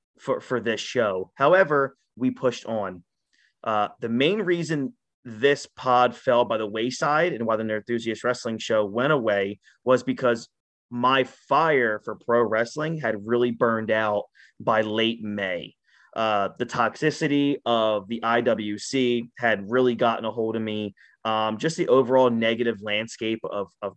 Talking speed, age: 155 wpm, 30-49